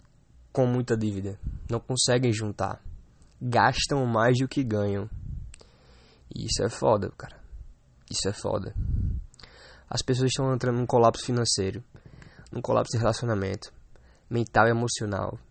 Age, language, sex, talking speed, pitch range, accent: 20-39, Portuguese, male, 130 wpm, 110-135 Hz, Brazilian